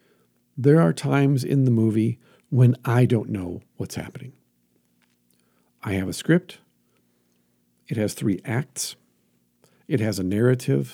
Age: 50-69